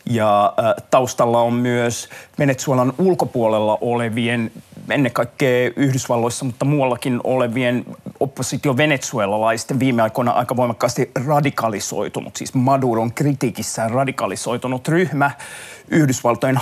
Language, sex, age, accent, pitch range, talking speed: Finnish, male, 30-49, native, 120-150 Hz, 95 wpm